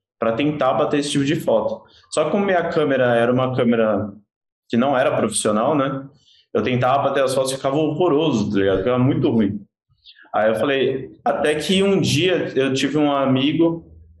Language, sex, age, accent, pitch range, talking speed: Portuguese, male, 20-39, Brazilian, 115-145 Hz, 185 wpm